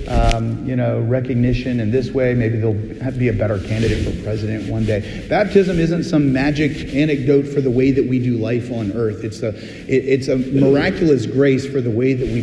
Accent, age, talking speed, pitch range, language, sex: American, 40-59, 215 wpm, 105-155 Hz, English, male